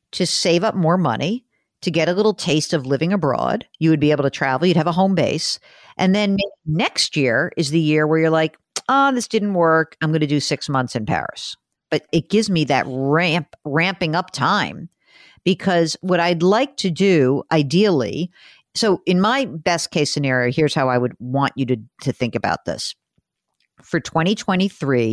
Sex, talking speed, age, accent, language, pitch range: female, 195 wpm, 50-69, American, English, 140-190 Hz